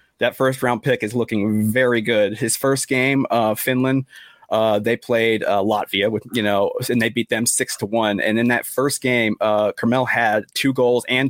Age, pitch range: 30-49, 110-125 Hz